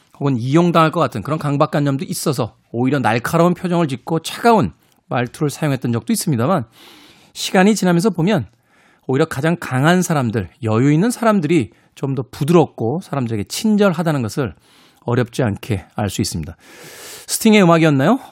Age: 40-59